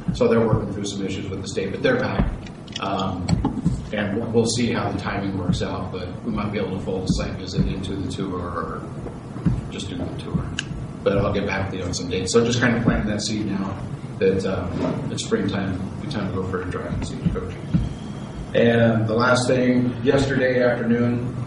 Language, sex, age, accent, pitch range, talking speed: English, male, 40-59, American, 95-115 Hz, 215 wpm